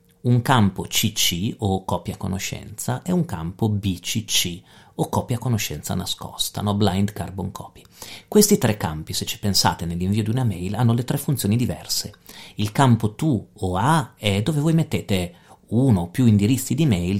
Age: 40-59